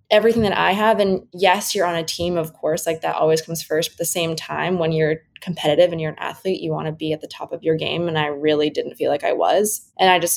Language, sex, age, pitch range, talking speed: English, female, 20-39, 160-185 Hz, 285 wpm